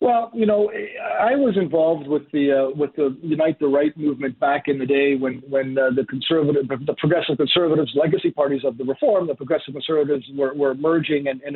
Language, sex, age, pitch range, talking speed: English, male, 50-69, 135-165 Hz, 210 wpm